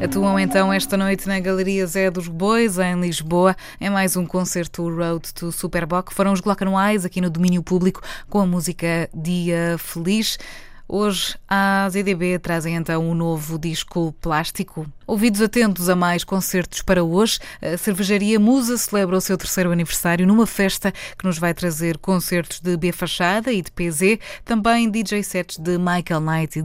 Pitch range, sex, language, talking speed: 170-205 Hz, female, Portuguese, 165 wpm